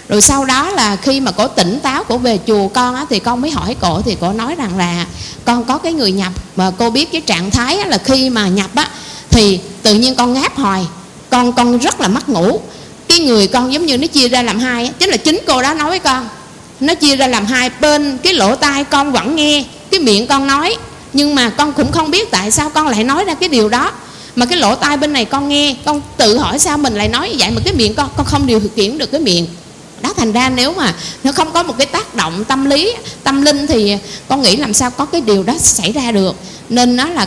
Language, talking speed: Vietnamese, 260 wpm